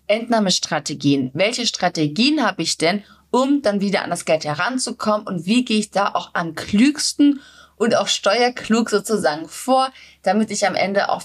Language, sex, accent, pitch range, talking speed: German, female, German, 180-230 Hz, 165 wpm